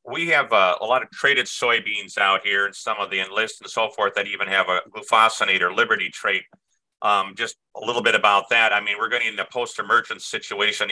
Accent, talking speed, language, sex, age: American, 220 wpm, English, male, 50-69